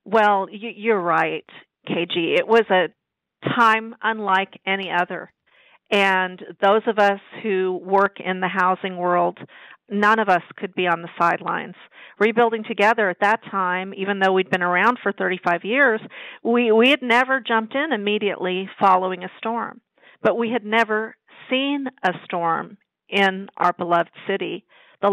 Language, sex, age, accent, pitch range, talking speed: English, female, 50-69, American, 185-220 Hz, 155 wpm